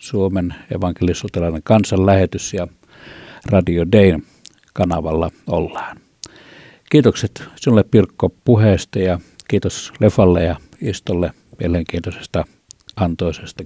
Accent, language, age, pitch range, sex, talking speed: native, Finnish, 60-79, 85-105 Hz, male, 85 wpm